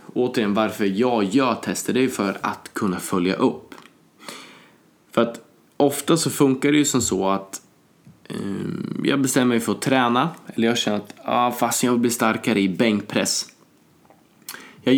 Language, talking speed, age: Swedish, 170 wpm, 20-39